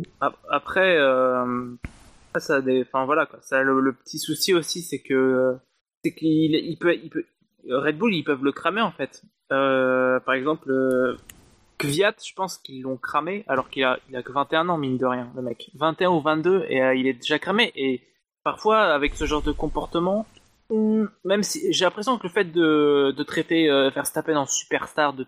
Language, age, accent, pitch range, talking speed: French, 20-39, French, 135-175 Hz, 190 wpm